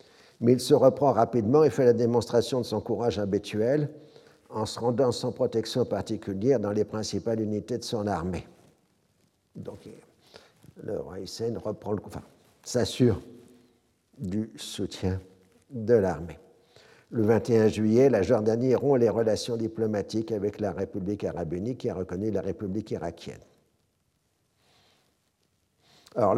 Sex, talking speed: male, 125 wpm